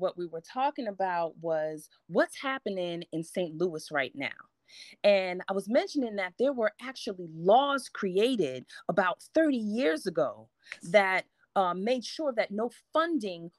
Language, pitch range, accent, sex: English, 180-265 Hz, American, female